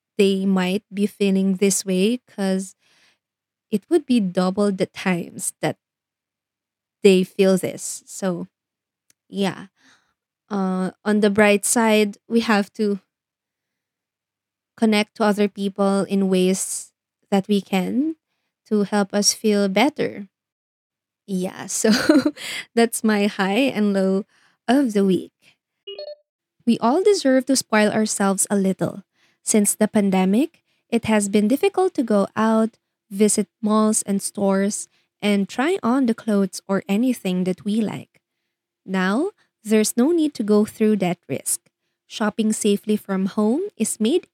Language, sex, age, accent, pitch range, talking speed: Filipino, female, 20-39, native, 195-230 Hz, 135 wpm